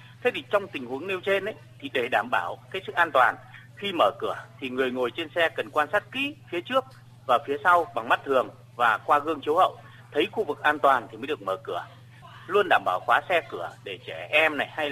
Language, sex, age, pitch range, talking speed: Vietnamese, male, 30-49, 120-195 Hz, 250 wpm